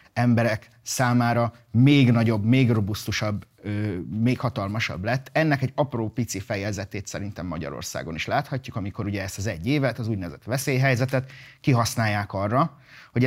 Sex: male